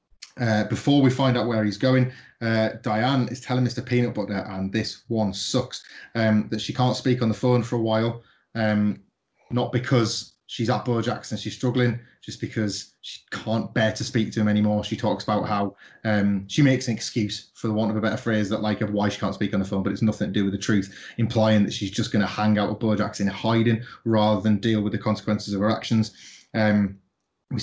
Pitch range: 105-125 Hz